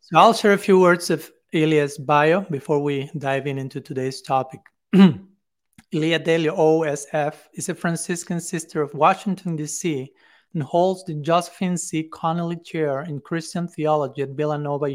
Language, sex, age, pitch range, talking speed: English, male, 40-59, 145-170 Hz, 155 wpm